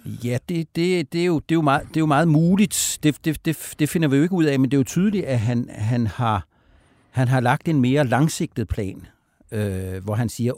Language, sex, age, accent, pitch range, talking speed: Danish, male, 60-79, native, 110-145 Hz, 255 wpm